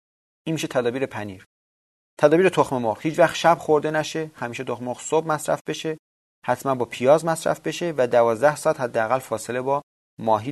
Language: Persian